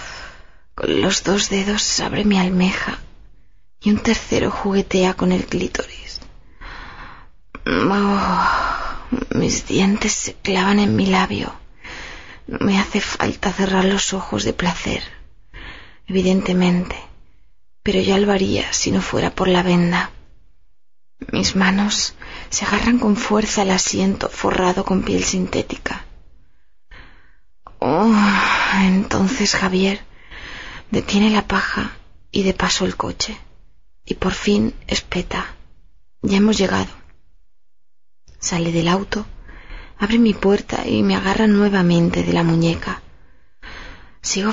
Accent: Spanish